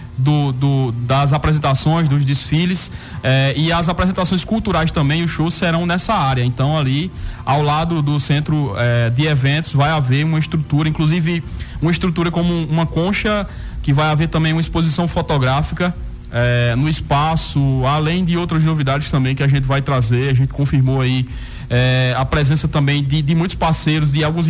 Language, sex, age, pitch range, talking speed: Portuguese, male, 20-39, 135-165 Hz, 165 wpm